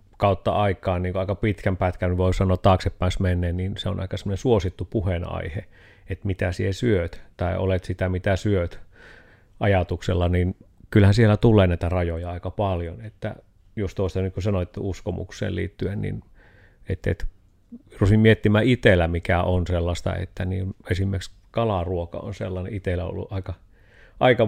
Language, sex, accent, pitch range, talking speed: Finnish, male, native, 90-105 Hz, 150 wpm